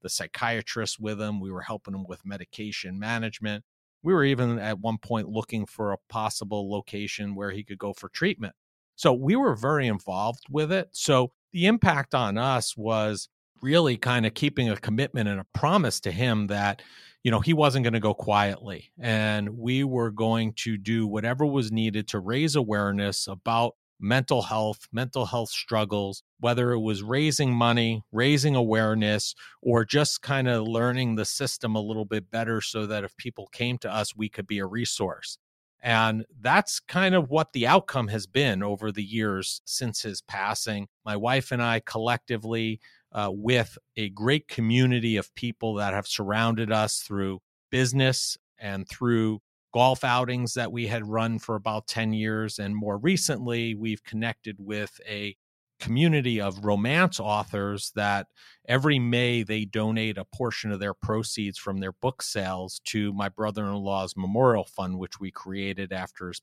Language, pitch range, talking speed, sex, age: English, 105-125 Hz, 170 wpm, male, 40-59